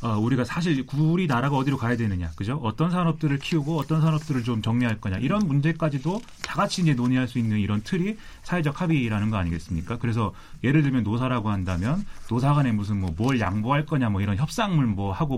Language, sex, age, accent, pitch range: Korean, male, 30-49, native, 105-155 Hz